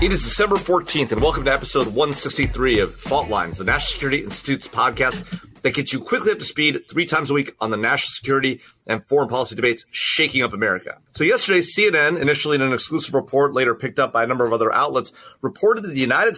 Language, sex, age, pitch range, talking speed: English, male, 30-49, 130-165 Hz, 220 wpm